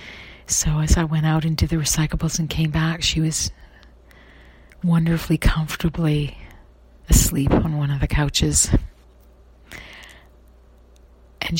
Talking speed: 120 wpm